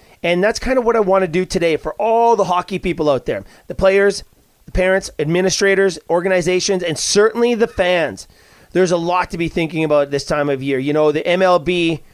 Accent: American